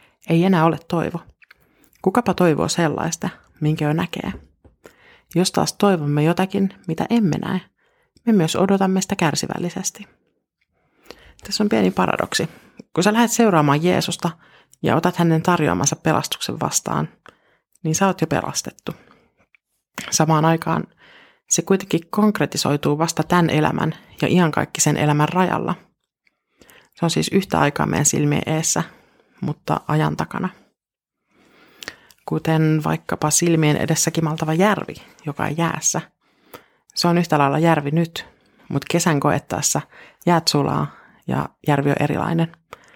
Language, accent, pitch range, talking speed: Finnish, native, 150-185 Hz, 125 wpm